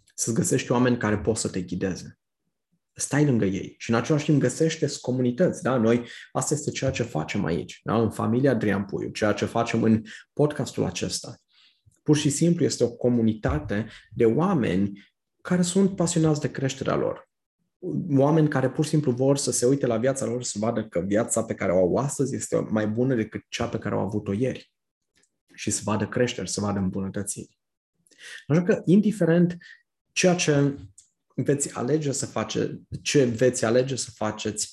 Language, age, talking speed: Romanian, 20-39, 170 wpm